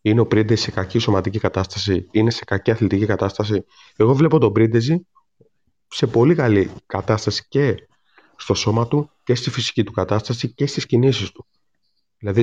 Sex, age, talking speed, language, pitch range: male, 30-49, 165 wpm, Greek, 100-140 Hz